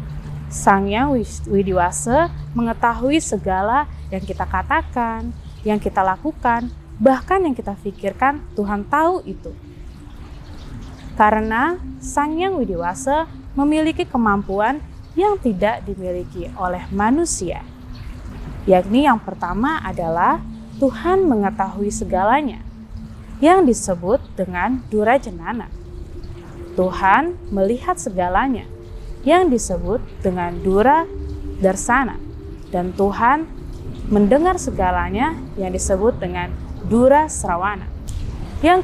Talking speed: 90 wpm